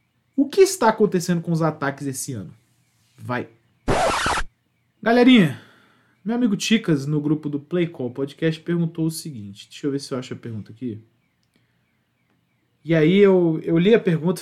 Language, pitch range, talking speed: Portuguese, 135-180 Hz, 160 wpm